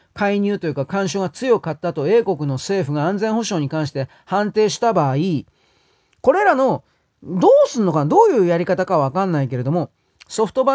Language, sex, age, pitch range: Japanese, male, 40-59, 155-245 Hz